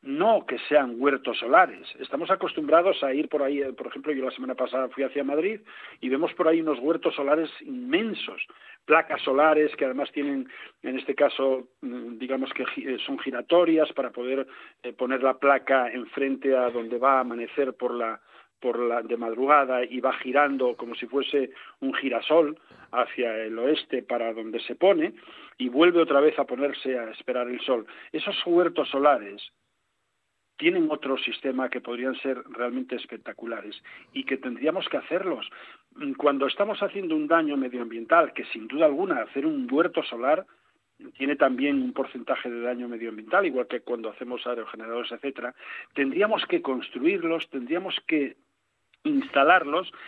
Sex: male